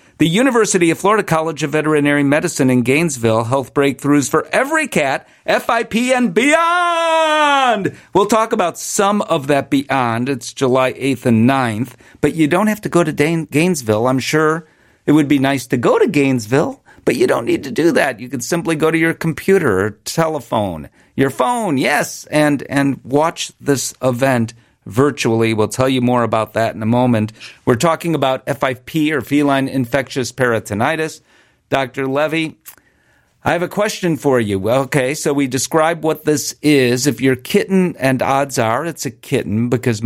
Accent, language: American, English